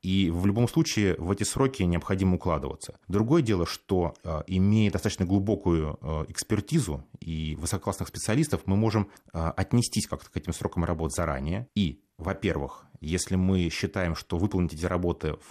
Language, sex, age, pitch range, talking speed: Russian, male, 30-49, 85-100 Hz, 145 wpm